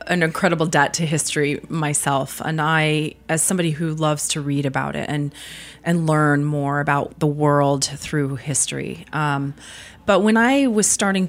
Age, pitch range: 30-49, 145-180 Hz